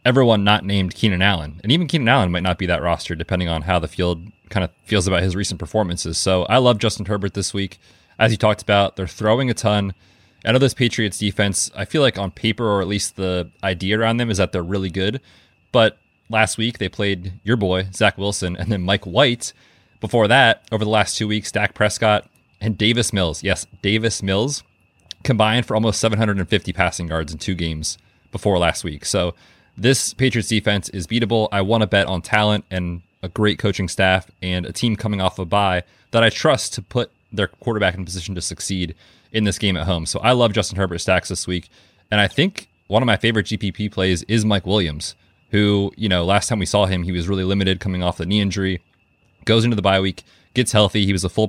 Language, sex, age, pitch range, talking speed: English, male, 30-49, 90-110 Hz, 225 wpm